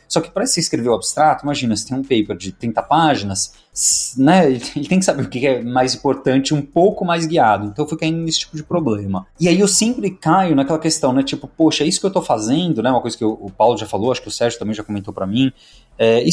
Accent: Brazilian